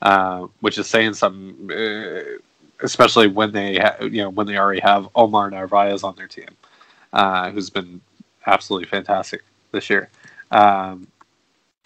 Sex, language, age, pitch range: male, English, 20-39, 100-115 Hz